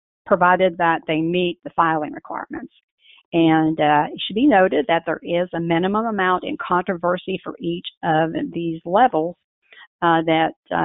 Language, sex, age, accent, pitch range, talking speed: English, female, 50-69, American, 165-195 Hz, 155 wpm